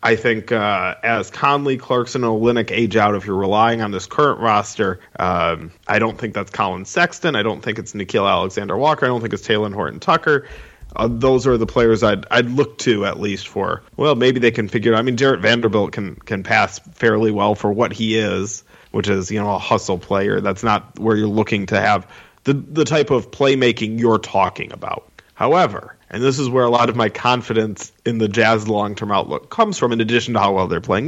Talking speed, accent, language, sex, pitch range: 220 wpm, American, English, male, 110-135 Hz